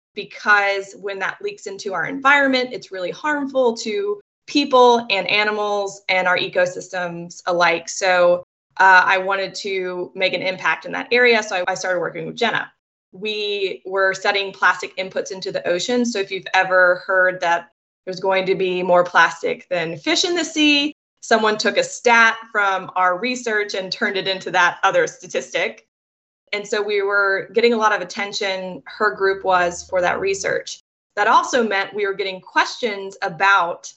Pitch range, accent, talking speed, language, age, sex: 185-240 Hz, American, 175 wpm, English, 20-39, female